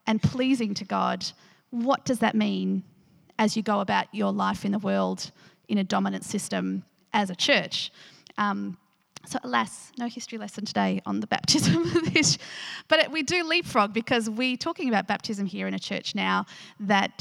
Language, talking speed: English, 180 wpm